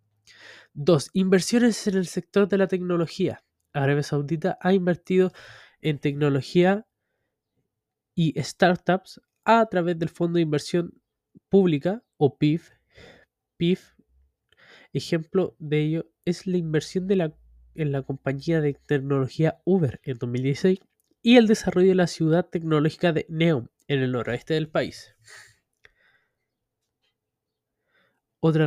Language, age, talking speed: Spanish, 20-39, 120 wpm